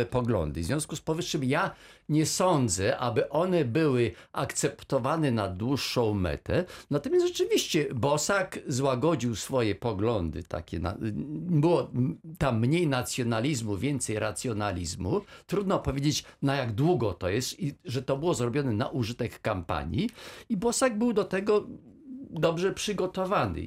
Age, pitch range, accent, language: 50-69, 115-170 Hz, native, Polish